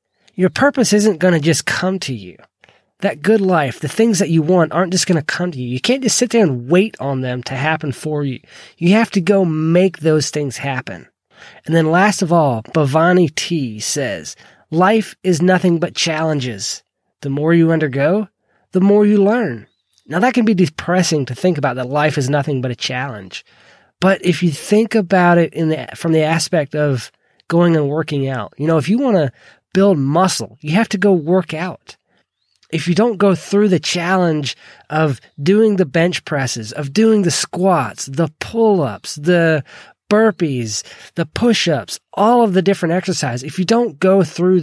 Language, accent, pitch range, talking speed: English, American, 150-190 Hz, 190 wpm